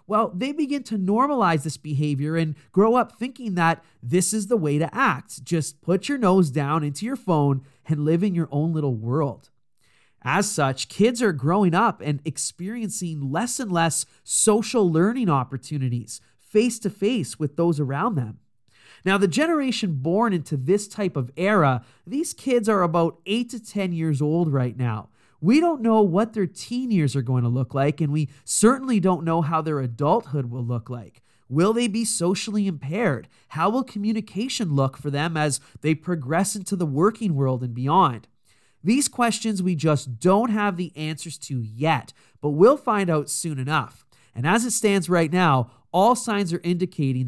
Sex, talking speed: male, 180 wpm